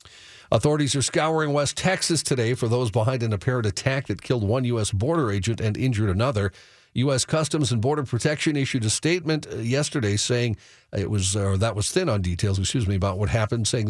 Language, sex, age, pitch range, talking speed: English, male, 50-69, 100-130 Hz, 195 wpm